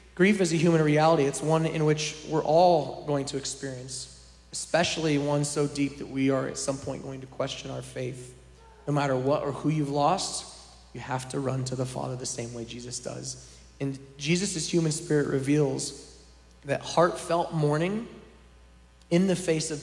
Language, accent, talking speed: English, American, 180 wpm